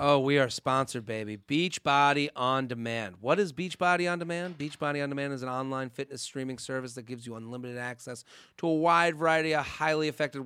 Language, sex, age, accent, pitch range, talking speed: English, male, 30-49, American, 130-160 Hz, 210 wpm